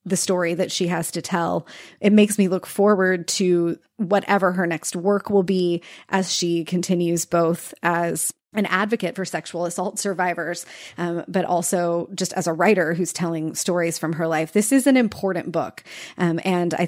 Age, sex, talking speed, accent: 20-39, female, 180 wpm, American